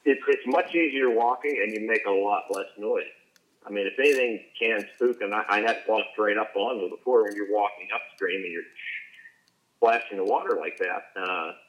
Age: 50-69